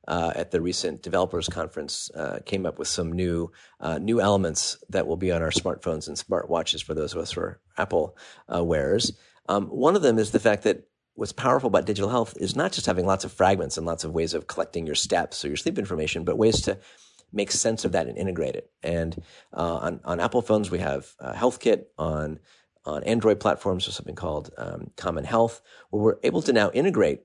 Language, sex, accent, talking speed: English, male, American, 220 wpm